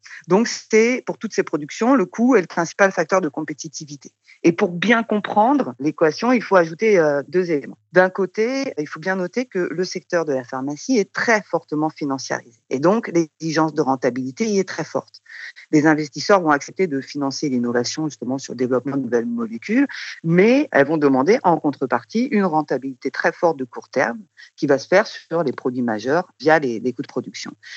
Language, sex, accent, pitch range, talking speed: French, female, French, 145-195 Hz, 195 wpm